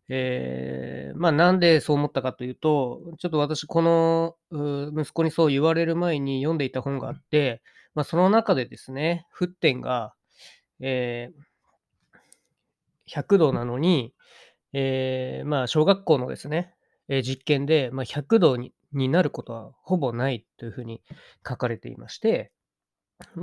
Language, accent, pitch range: Japanese, native, 125-165 Hz